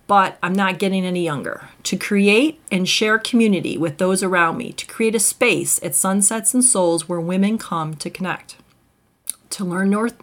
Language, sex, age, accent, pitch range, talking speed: English, female, 40-59, American, 185-230 Hz, 180 wpm